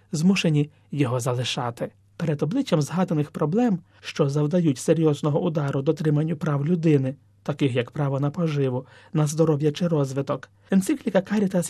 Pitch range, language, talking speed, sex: 140-190 Hz, Ukrainian, 130 wpm, male